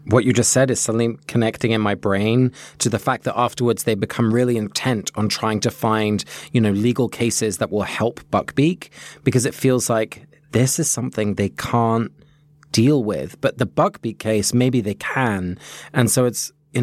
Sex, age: male, 20-39